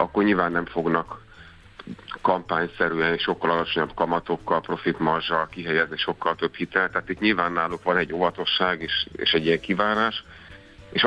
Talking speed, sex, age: 145 wpm, male, 50-69